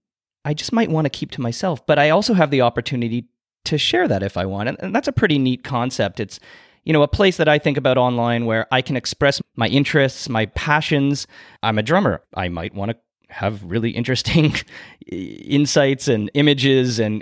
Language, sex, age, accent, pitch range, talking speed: English, male, 30-49, American, 115-145 Hz, 200 wpm